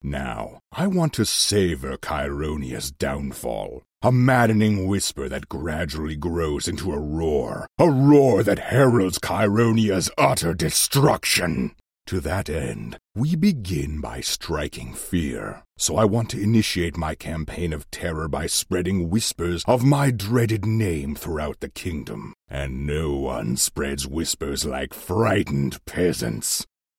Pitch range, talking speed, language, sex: 75-125 Hz, 130 wpm, English, male